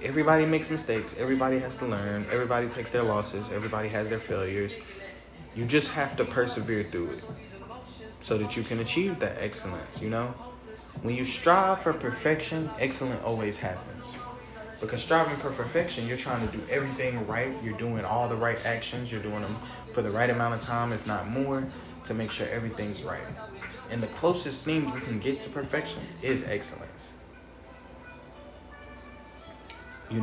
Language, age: English, 20-39